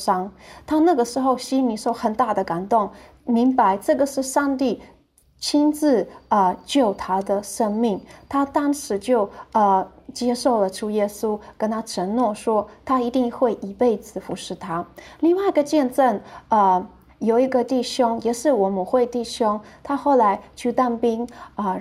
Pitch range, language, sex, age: 210-260 Hz, Chinese, female, 20-39